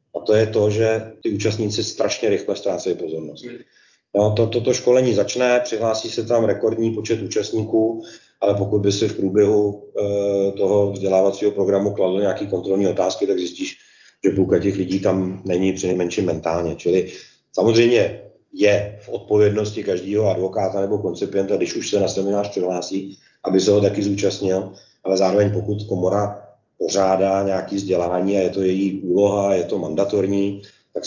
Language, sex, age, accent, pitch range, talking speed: Czech, male, 40-59, native, 90-105 Hz, 160 wpm